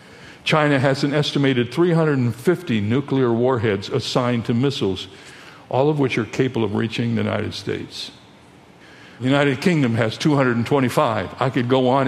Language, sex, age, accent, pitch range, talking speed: English, male, 60-79, American, 115-145 Hz, 145 wpm